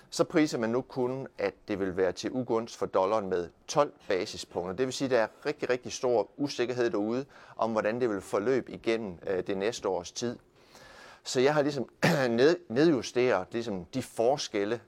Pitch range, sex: 95-130 Hz, male